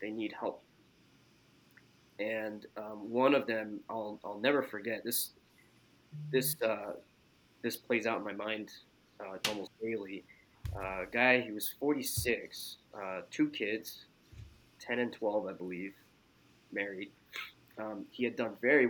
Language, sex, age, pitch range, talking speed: English, male, 20-39, 105-125 Hz, 140 wpm